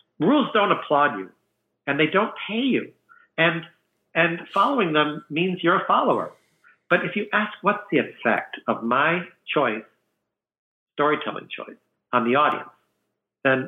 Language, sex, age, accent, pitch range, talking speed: English, male, 60-79, American, 130-195 Hz, 145 wpm